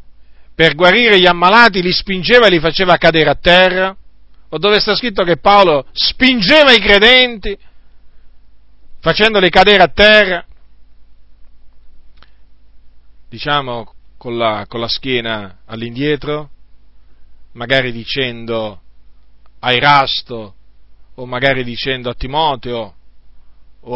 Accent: native